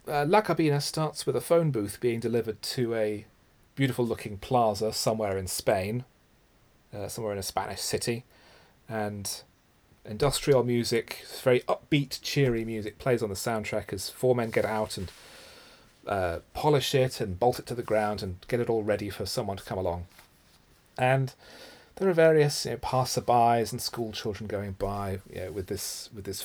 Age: 40-59